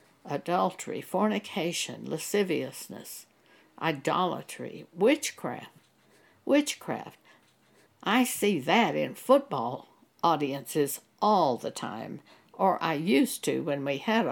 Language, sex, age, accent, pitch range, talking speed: English, female, 60-79, American, 180-235 Hz, 90 wpm